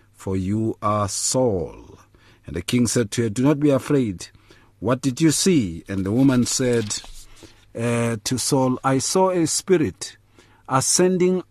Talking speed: 155 wpm